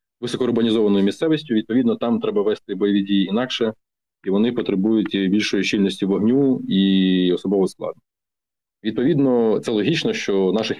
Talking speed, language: 130 wpm, Ukrainian